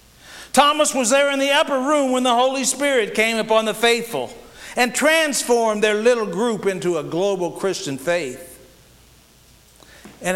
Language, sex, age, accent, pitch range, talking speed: English, male, 50-69, American, 135-200 Hz, 150 wpm